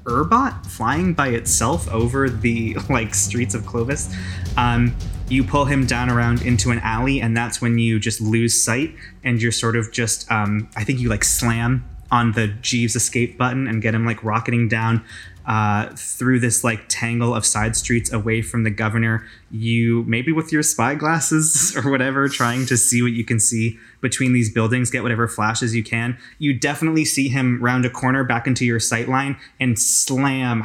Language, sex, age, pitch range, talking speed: English, male, 20-39, 110-125 Hz, 190 wpm